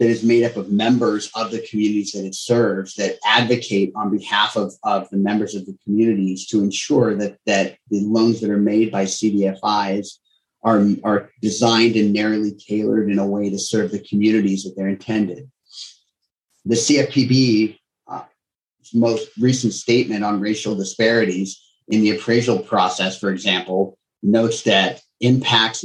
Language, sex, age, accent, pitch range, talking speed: English, male, 30-49, American, 105-115 Hz, 155 wpm